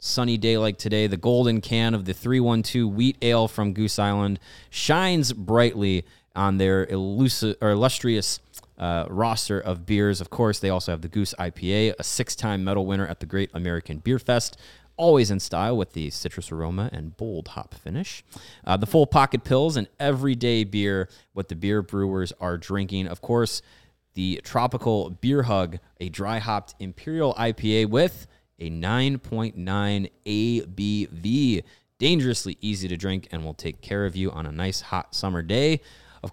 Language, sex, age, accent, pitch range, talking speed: English, male, 30-49, American, 95-120 Hz, 165 wpm